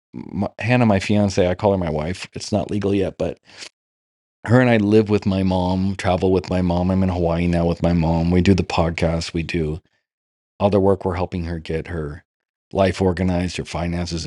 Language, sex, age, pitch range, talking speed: English, male, 40-59, 85-110 Hz, 210 wpm